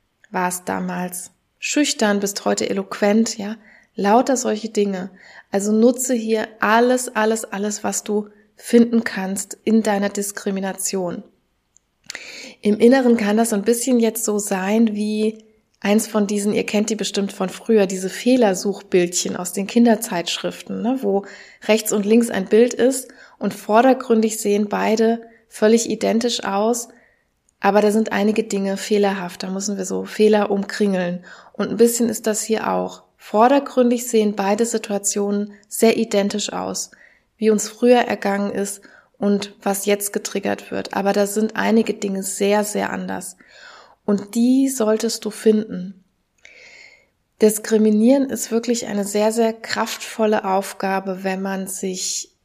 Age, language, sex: 20-39, German, female